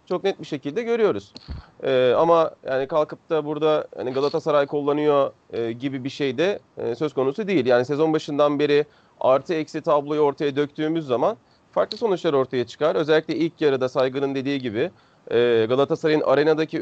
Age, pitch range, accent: 40-59, 140-195 Hz, native